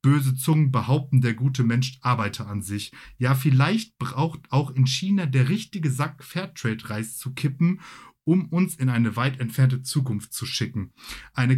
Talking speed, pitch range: 160 wpm, 115-150 Hz